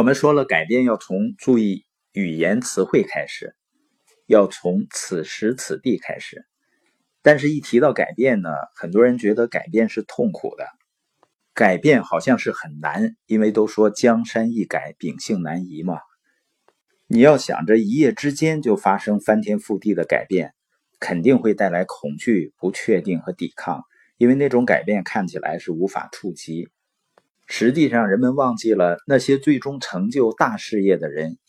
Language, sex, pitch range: Chinese, male, 105-150 Hz